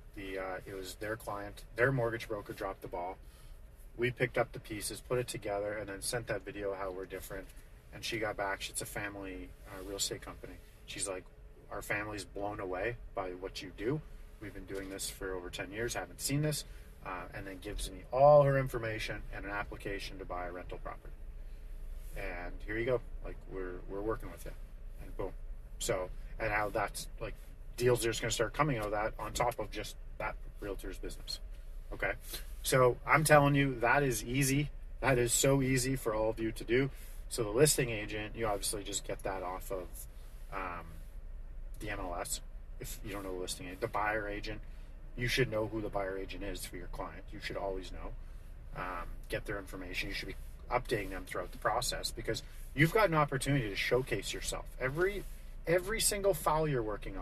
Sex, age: male, 30-49